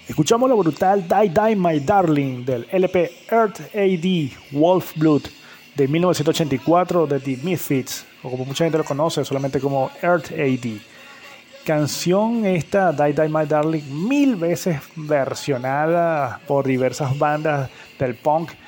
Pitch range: 135-170 Hz